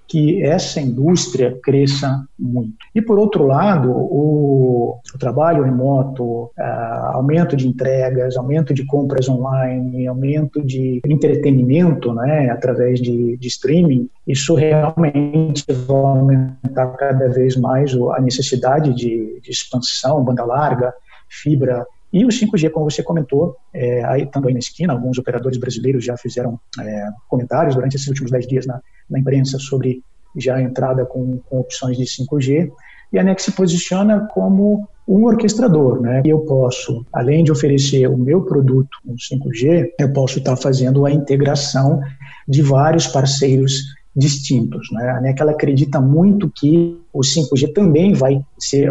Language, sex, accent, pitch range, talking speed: Portuguese, male, Brazilian, 130-150 Hz, 150 wpm